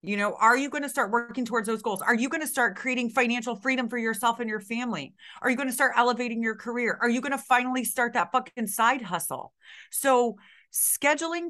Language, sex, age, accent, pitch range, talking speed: English, female, 30-49, American, 205-265 Hz, 230 wpm